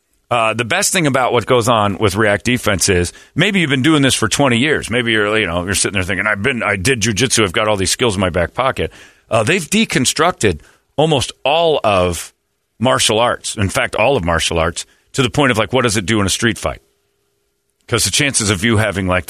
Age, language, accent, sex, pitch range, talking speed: 40-59, English, American, male, 95-120 Hz, 235 wpm